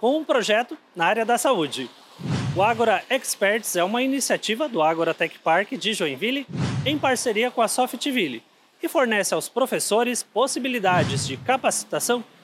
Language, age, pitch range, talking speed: Portuguese, 30-49, 210-270 Hz, 150 wpm